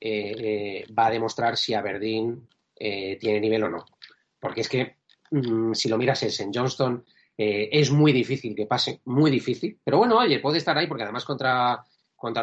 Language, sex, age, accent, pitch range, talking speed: Spanish, male, 30-49, Spanish, 115-150 Hz, 195 wpm